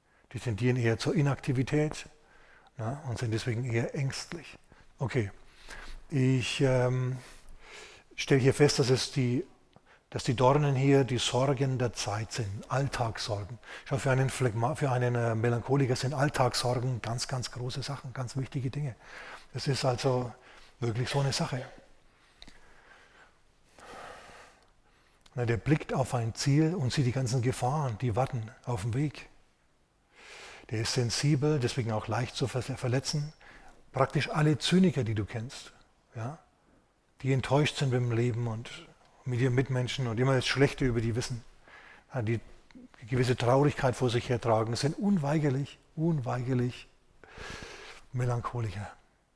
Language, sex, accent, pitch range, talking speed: German, male, German, 120-145 Hz, 135 wpm